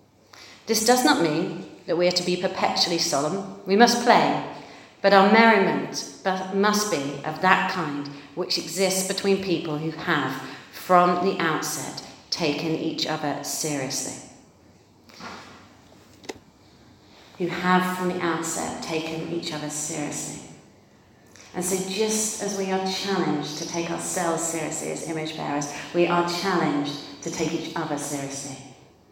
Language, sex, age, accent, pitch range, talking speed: English, female, 40-59, British, 155-195 Hz, 135 wpm